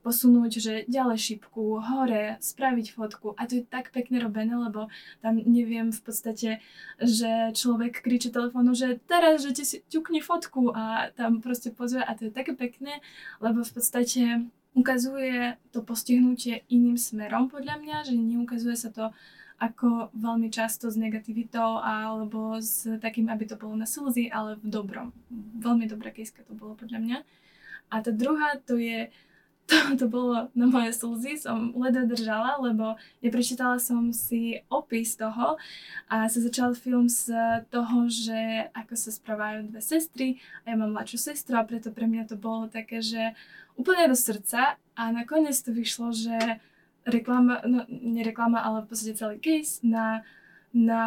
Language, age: Slovak, 20-39